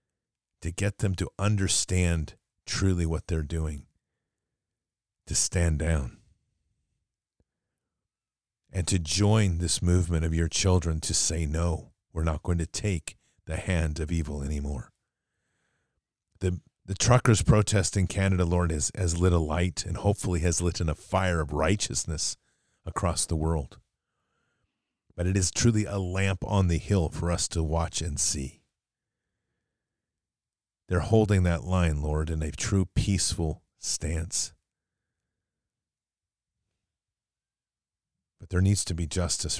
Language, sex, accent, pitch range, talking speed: English, male, American, 80-100 Hz, 135 wpm